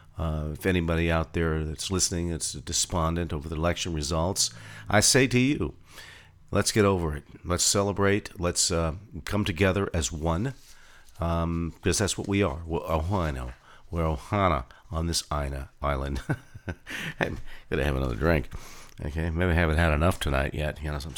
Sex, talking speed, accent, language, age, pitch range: male, 165 wpm, American, English, 50-69, 80-100 Hz